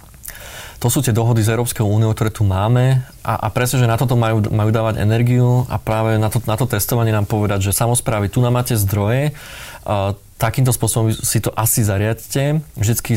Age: 20-39